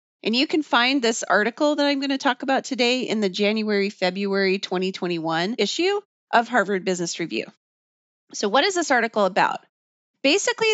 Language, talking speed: English, 160 wpm